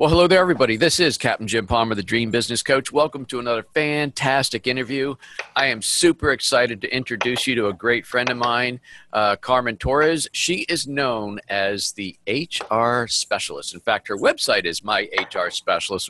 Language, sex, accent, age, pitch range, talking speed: English, male, American, 50-69, 115-135 Hz, 185 wpm